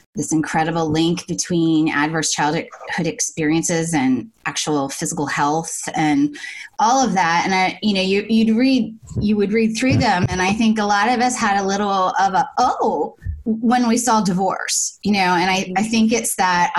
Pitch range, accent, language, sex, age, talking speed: 175-225 Hz, American, English, female, 20-39, 185 wpm